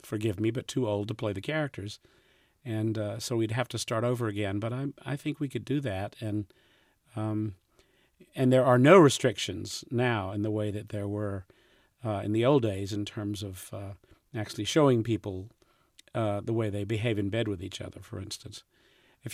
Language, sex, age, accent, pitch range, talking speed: English, male, 50-69, American, 105-125 Hz, 200 wpm